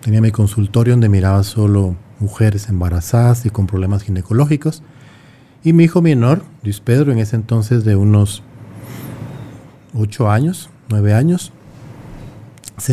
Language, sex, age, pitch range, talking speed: Spanish, male, 40-59, 110-135 Hz, 130 wpm